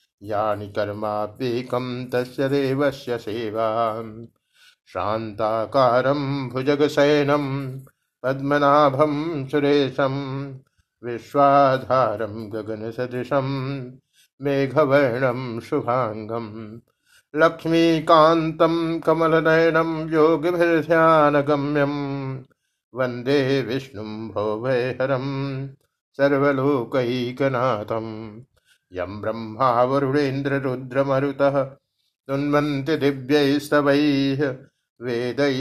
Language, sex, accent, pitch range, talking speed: Hindi, male, native, 120-145 Hz, 40 wpm